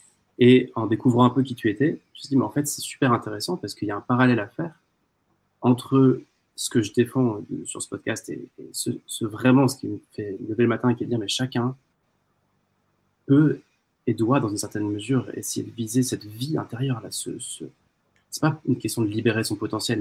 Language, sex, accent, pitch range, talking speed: French, male, French, 110-130 Hz, 230 wpm